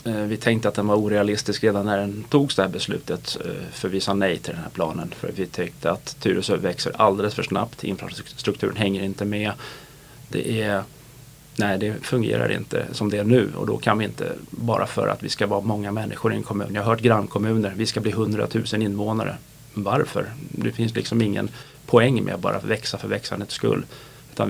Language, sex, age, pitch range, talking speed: Swedish, male, 30-49, 100-125 Hz, 205 wpm